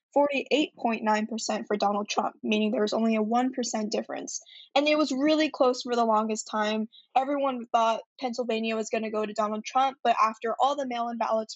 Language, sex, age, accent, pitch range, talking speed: English, female, 10-29, American, 220-265 Hz, 180 wpm